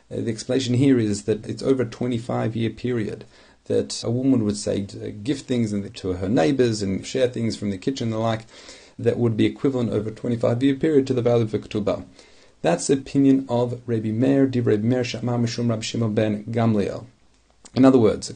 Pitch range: 105-130 Hz